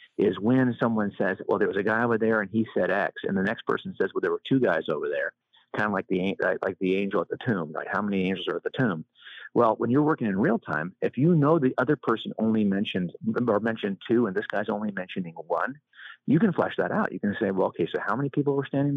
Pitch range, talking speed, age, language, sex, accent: 95-135 Hz, 270 wpm, 40-59, English, male, American